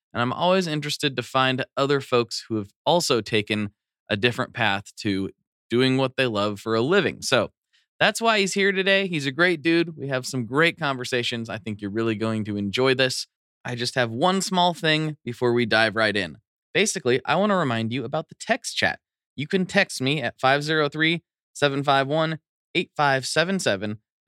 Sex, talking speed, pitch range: male, 180 wpm, 110-155 Hz